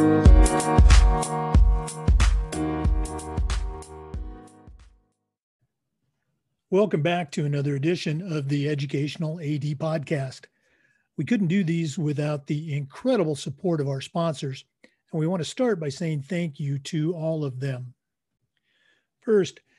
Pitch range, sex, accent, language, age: 140-175 Hz, male, American, English, 50-69